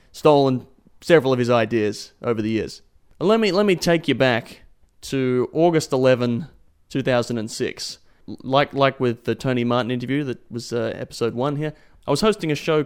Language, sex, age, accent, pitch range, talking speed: English, male, 30-49, Australian, 115-140 Hz, 175 wpm